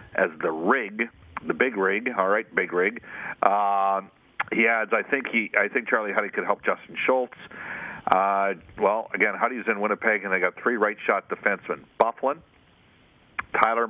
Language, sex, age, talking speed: English, male, 50-69, 170 wpm